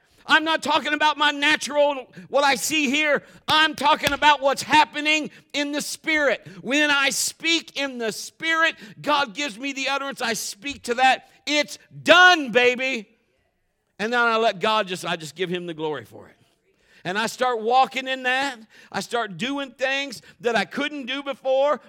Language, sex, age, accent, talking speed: Dutch, male, 50-69, American, 180 wpm